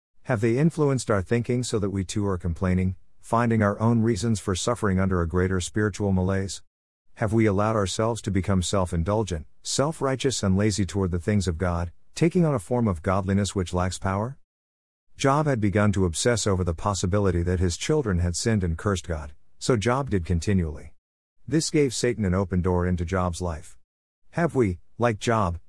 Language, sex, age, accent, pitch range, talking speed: English, male, 50-69, American, 90-120 Hz, 185 wpm